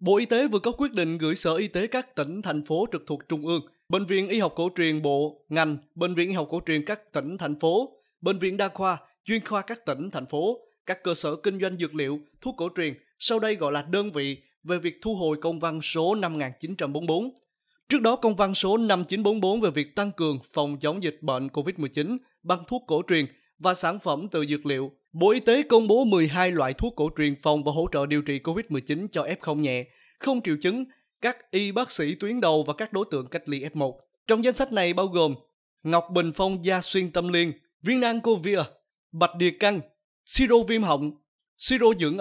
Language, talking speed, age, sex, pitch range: Vietnamese, 220 wpm, 20-39, male, 155-210 Hz